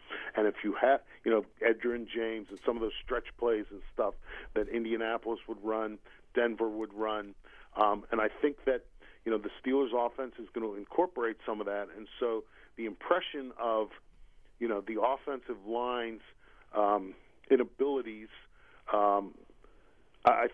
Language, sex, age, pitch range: English, male, 40-59, 105-130 Hz